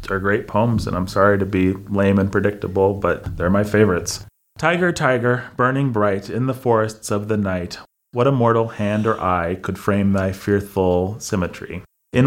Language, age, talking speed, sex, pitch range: English, 30-49, 175 wpm, male, 100-120 Hz